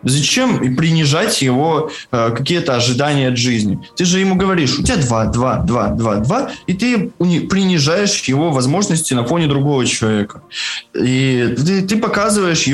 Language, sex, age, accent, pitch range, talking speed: Russian, male, 20-39, native, 120-170 Hz, 150 wpm